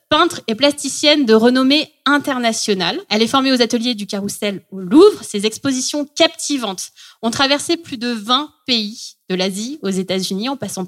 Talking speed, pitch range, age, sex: 170 wpm, 200-275 Hz, 20-39, female